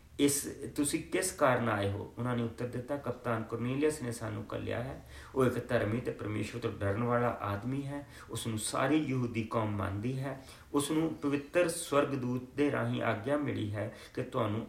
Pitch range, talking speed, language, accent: 110-155 Hz, 165 wpm, English, Indian